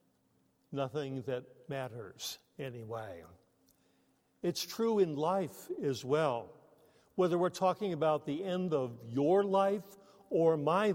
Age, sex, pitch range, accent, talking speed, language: 60-79, male, 145-185 Hz, American, 115 wpm, English